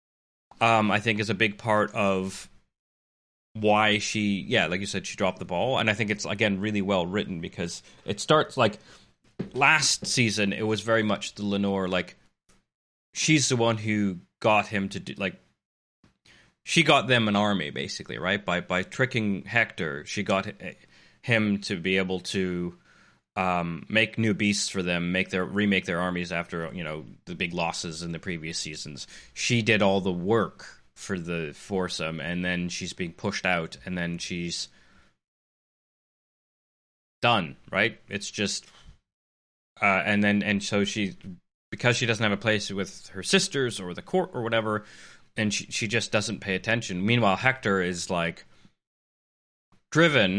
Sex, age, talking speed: male, 30-49, 165 wpm